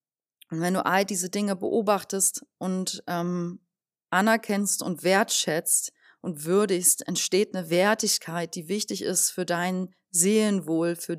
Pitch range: 160-185 Hz